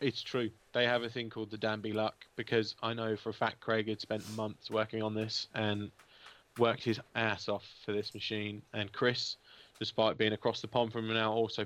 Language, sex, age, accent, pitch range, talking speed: English, male, 20-39, British, 105-120 Hz, 215 wpm